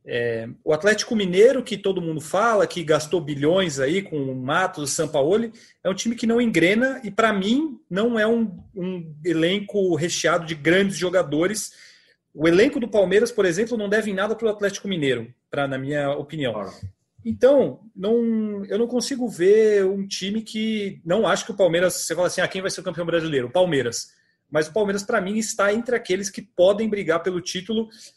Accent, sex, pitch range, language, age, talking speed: Brazilian, male, 160-215 Hz, Portuguese, 30-49, 195 wpm